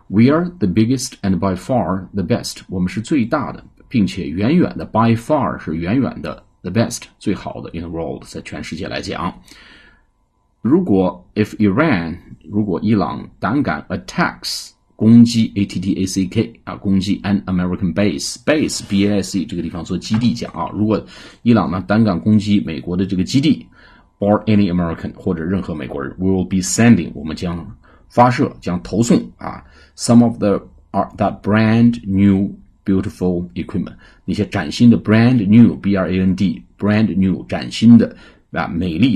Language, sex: Chinese, male